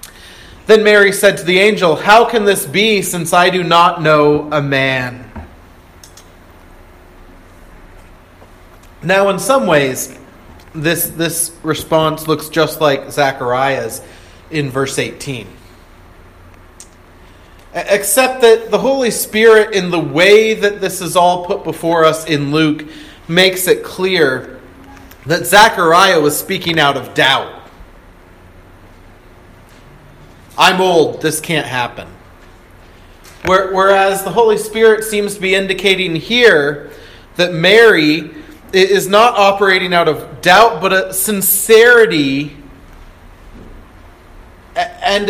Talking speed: 110 wpm